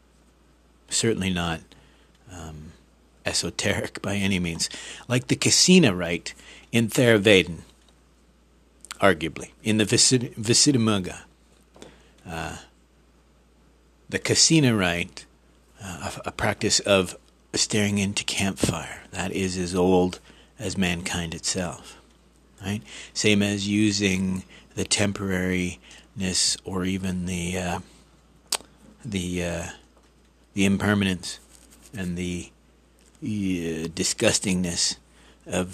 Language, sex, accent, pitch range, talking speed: English, male, American, 80-100 Hz, 90 wpm